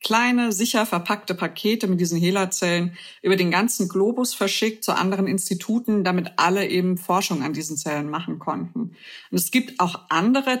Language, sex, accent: German, female, German